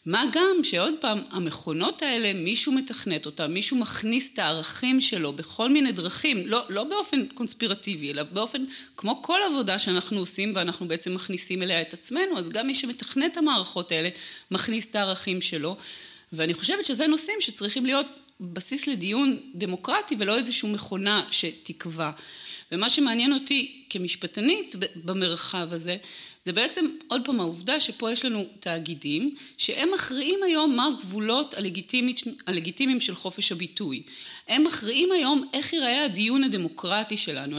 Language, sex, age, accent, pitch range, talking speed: Hebrew, female, 30-49, native, 185-270 Hz, 140 wpm